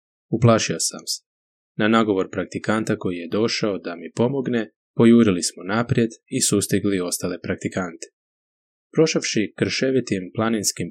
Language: Croatian